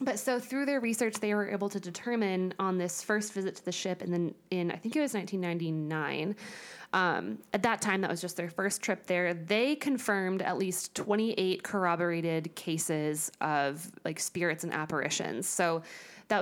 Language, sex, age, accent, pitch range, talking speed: English, female, 20-39, American, 170-205 Hz, 185 wpm